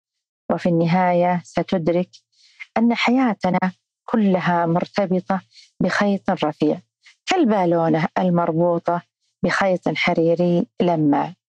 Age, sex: 40-59, female